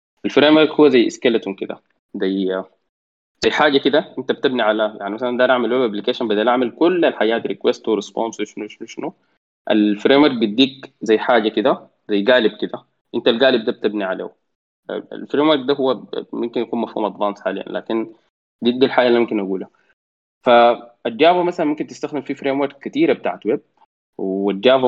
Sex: male